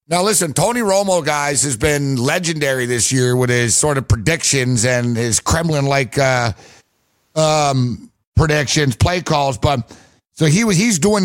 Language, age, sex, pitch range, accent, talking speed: English, 50-69, male, 135-175 Hz, American, 160 wpm